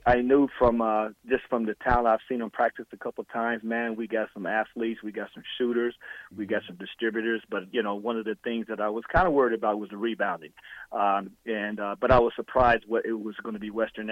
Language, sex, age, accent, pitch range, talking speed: English, male, 40-59, American, 110-120 Hz, 250 wpm